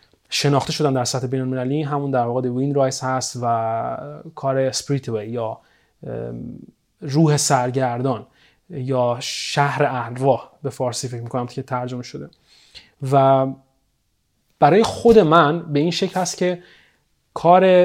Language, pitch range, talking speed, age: Persian, 130-155 Hz, 130 wpm, 30-49